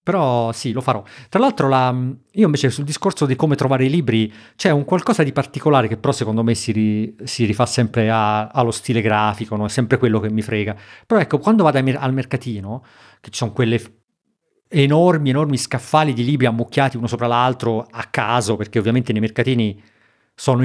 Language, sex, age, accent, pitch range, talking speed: Italian, male, 40-59, native, 115-155 Hz, 195 wpm